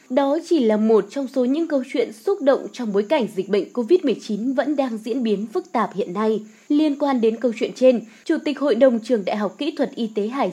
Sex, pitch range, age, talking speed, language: female, 220-295 Hz, 20-39, 245 wpm, Vietnamese